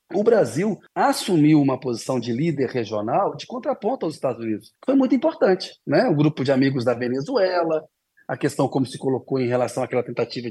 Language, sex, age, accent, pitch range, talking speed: Portuguese, male, 40-59, Brazilian, 125-175 Hz, 185 wpm